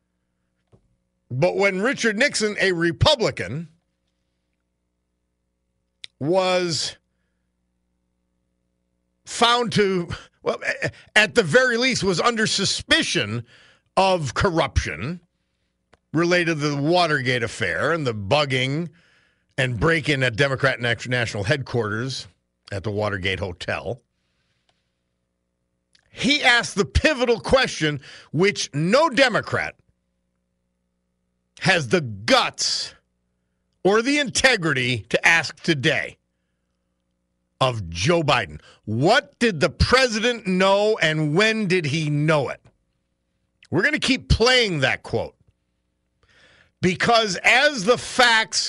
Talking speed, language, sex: 95 wpm, English, male